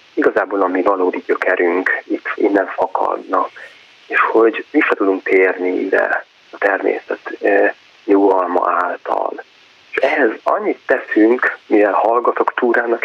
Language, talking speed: Hungarian, 115 wpm